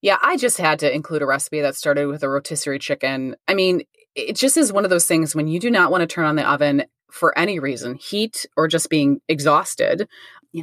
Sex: female